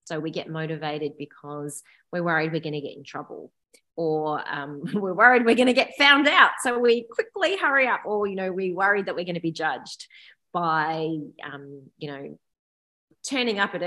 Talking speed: 200 wpm